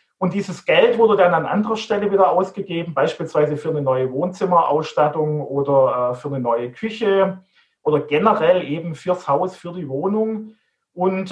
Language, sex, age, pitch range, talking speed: German, male, 40-59, 145-200 Hz, 160 wpm